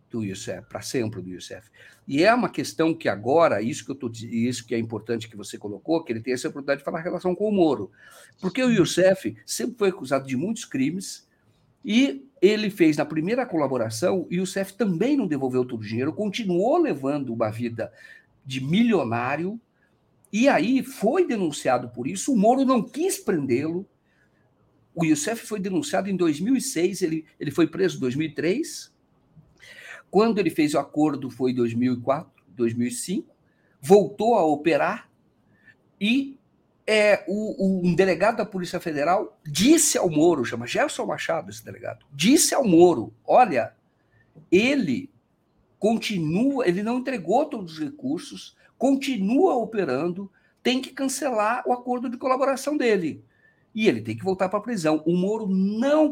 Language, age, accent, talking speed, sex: Portuguese, 50-69, Brazilian, 155 wpm, male